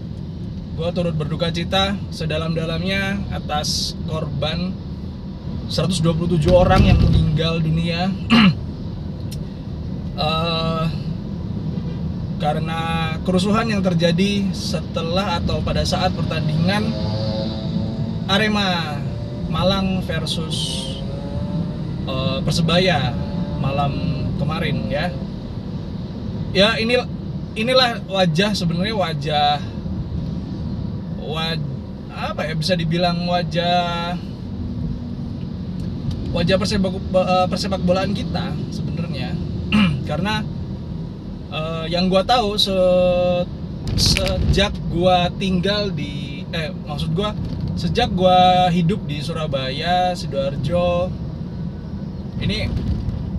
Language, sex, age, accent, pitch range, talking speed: Indonesian, male, 20-39, native, 155-185 Hz, 75 wpm